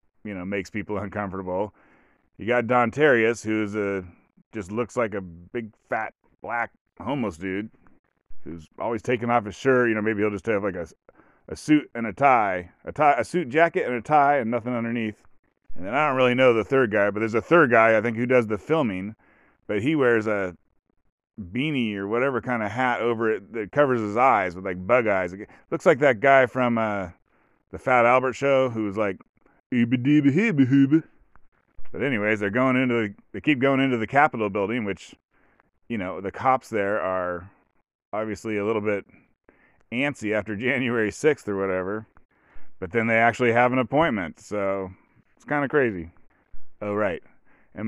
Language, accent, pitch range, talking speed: English, American, 100-125 Hz, 185 wpm